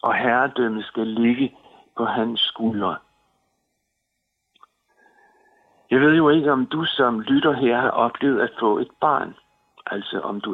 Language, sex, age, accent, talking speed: Danish, male, 60-79, native, 140 wpm